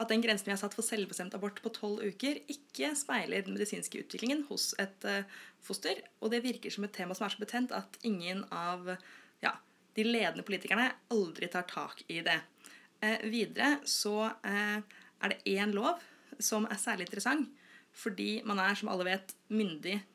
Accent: Norwegian